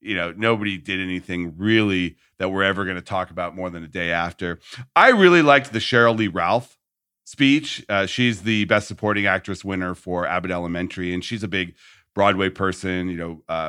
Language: English